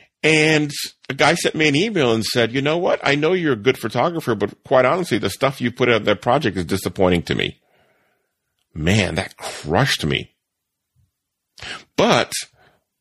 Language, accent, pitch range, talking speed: English, American, 100-140 Hz, 170 wpm